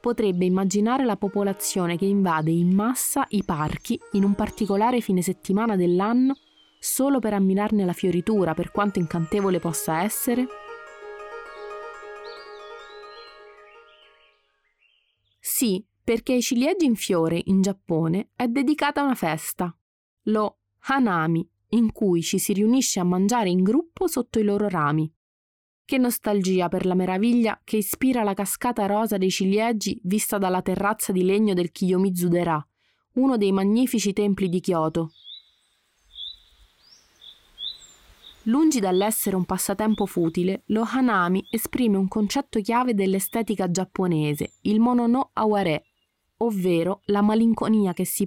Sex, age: female, 20-39